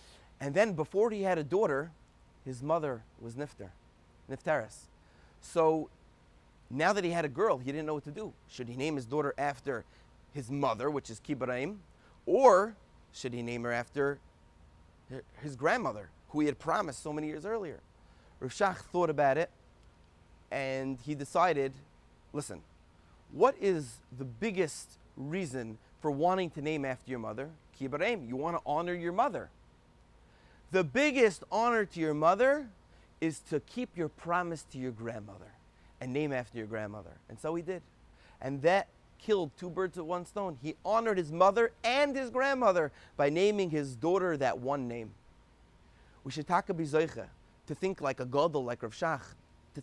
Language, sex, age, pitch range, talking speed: English, male, 30-49, 125-175 Hz, 165 wpm